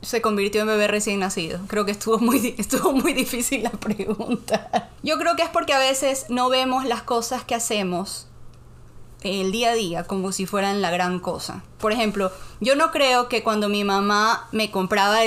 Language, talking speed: Spanish, 195 wpm